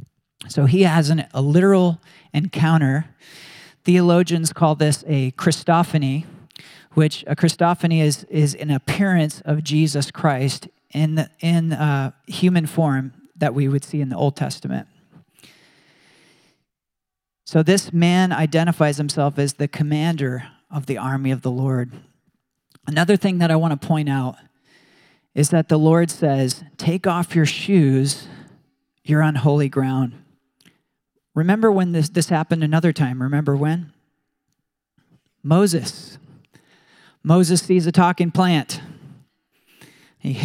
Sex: male